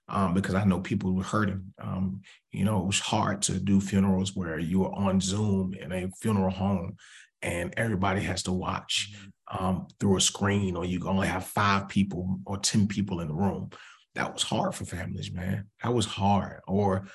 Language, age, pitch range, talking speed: English, 30-49, 95-105 Hz, 195 wpm